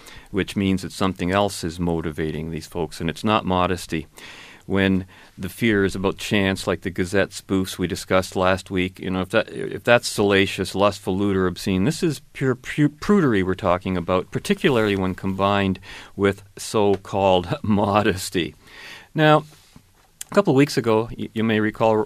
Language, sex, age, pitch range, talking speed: English, male, 40-59, 90-105 Hz, 165 wpm